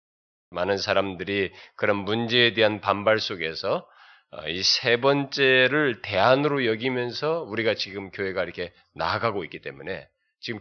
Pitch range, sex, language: 95-125 Hz, male, Korean